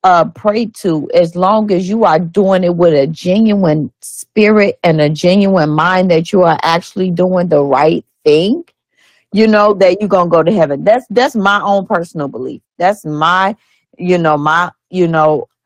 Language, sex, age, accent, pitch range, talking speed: English, female, 40-59, American, 160-210 Hz, 180 wpm